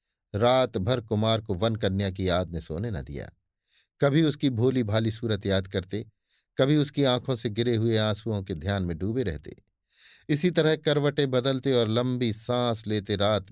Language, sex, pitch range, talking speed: Hindi, male, 100-140 Hz, 180 wpm